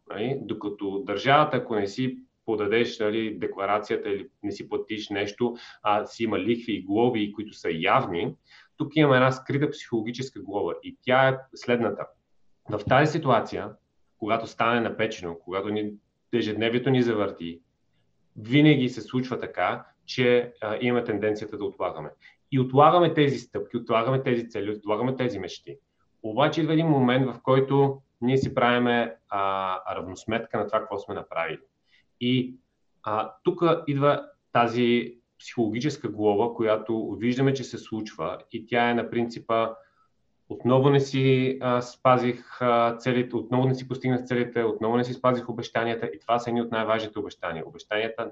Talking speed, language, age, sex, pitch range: 145 wpm, Bulgarian, 30-49, male, 110-130 Hz